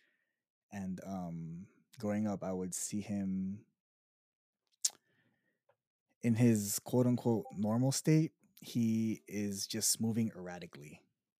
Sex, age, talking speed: male, 20-39, 100 wpm